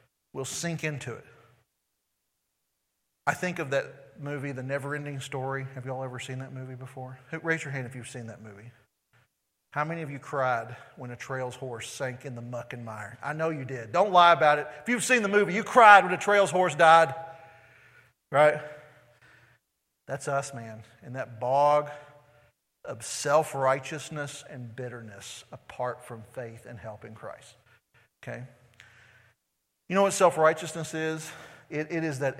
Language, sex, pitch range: English, male, 125-155 Hz